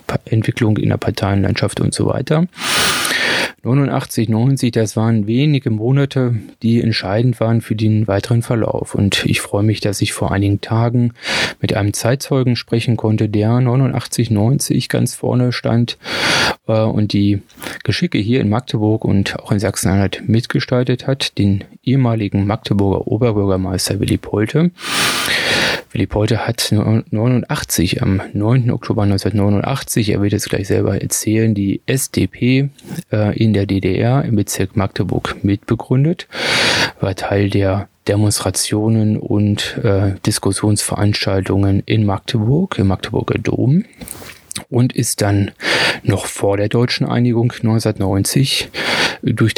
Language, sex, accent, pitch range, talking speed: German, male, German, 100-125 Hz, 125 wpm